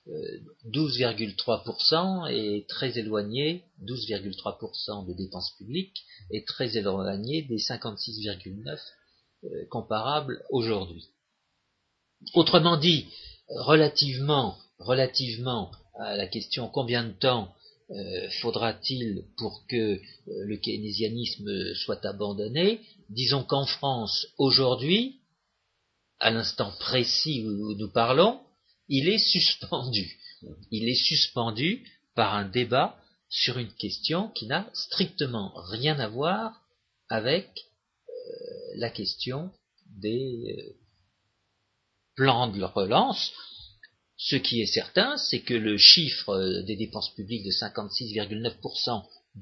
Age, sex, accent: 50-69, male, French